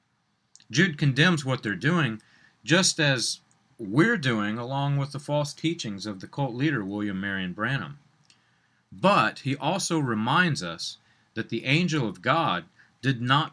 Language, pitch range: English, 110-155 Hz